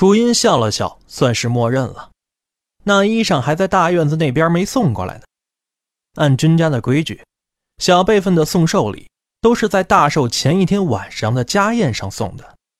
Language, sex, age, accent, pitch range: Chinese, male, 20-39, native, 120-195 Hz